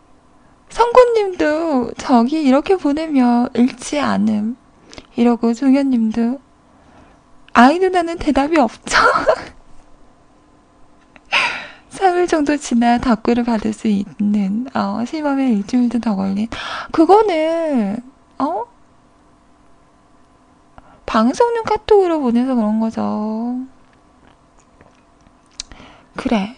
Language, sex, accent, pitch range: Korean, female, native, 230-310 Hz